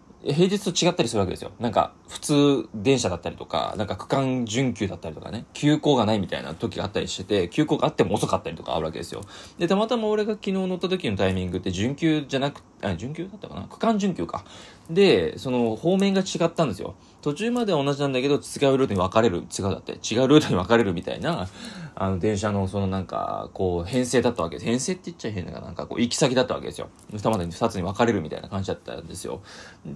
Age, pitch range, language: 20-39, 95-135 Hz, Japanese